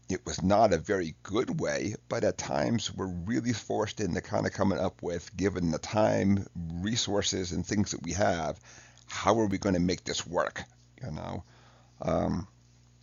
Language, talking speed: English, 180 wpm